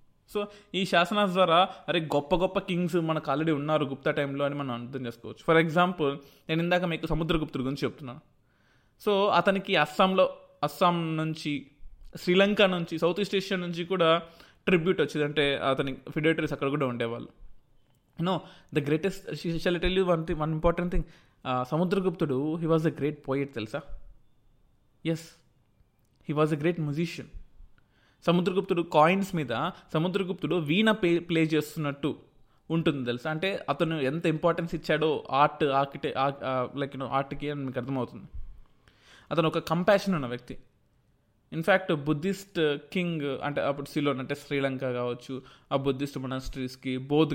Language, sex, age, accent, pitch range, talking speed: Telugu, male, 20-39, native, 135-170 Hz, 135 wpm